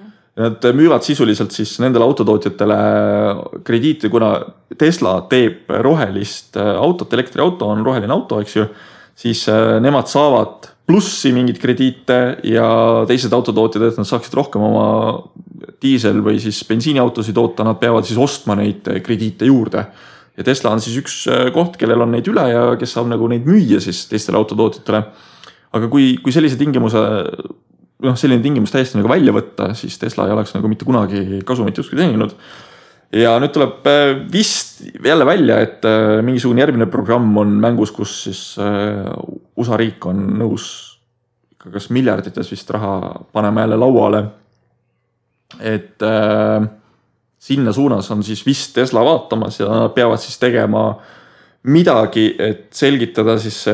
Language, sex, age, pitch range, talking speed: English, male, 30-49, 105-125 Hz, 135 wpm